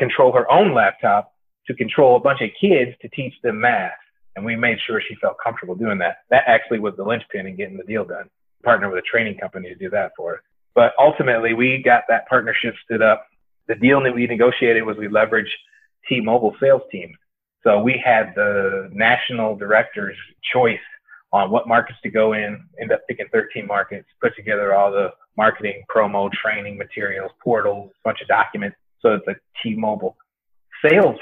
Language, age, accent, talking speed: English, 30-49, American, 185 wpm